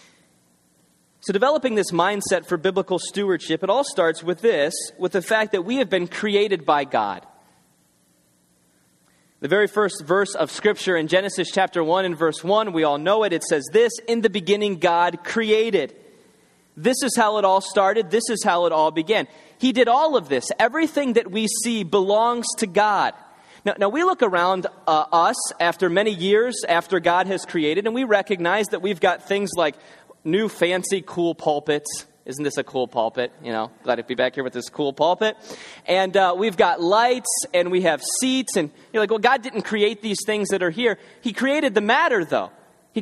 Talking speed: 195 wpm